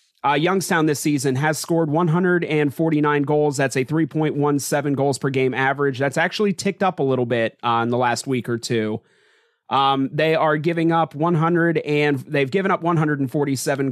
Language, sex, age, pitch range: English, male, 30-49, 135-155 Hz